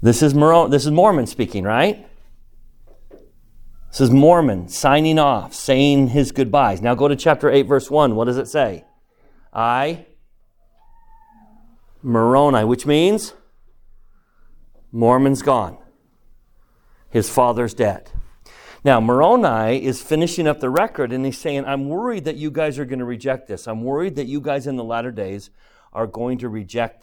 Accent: American